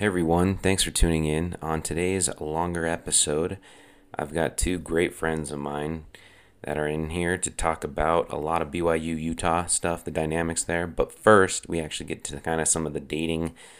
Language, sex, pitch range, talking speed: English, male, 75-85 Hz, 190 wpm